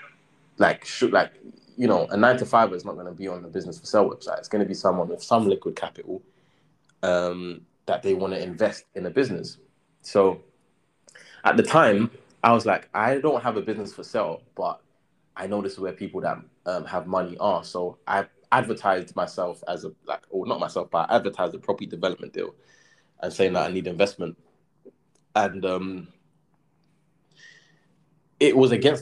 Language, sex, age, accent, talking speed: English, male, 20-39, British, 185 wpm